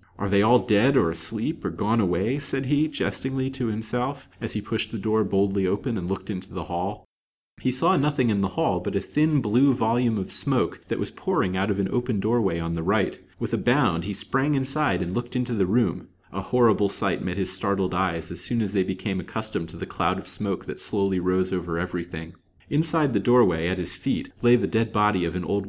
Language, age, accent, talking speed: English, 30-49, American, 225 wpm